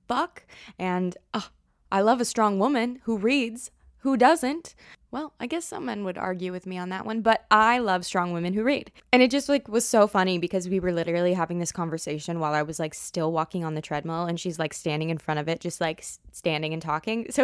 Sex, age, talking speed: female, 20-39, 235 wpm